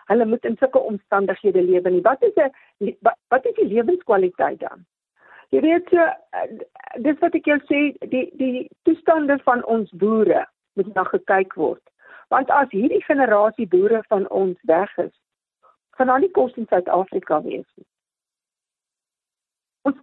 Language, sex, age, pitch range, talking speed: English, female, 50-69, 210-310 Hz, 140 wpm